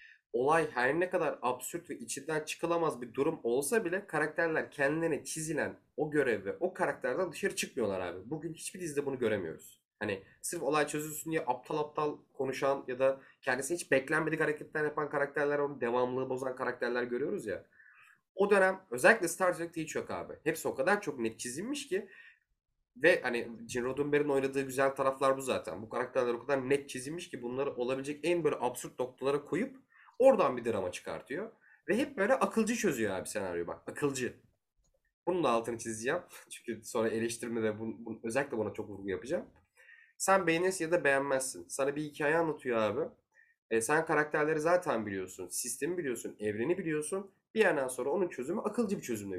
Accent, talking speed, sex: native, 175 wpm, male